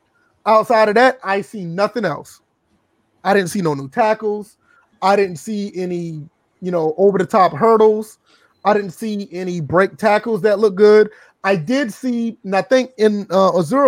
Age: 30-49